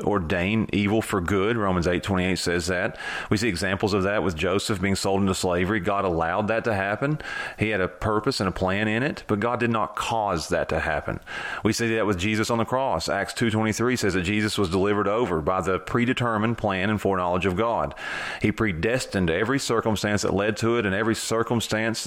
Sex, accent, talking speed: male, American, 205 wpm